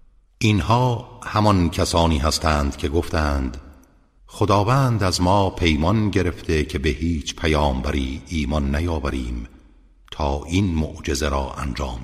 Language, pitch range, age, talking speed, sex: Persian, 75-90 Hz, 60-79, 110 wpm, male